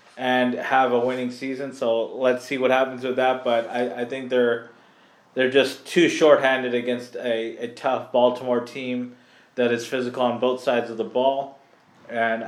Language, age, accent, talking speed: English, 20-39, American, 180 wpm